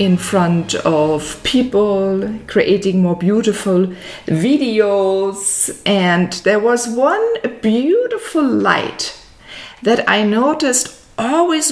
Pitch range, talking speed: 190-265 Hz, 90 wpm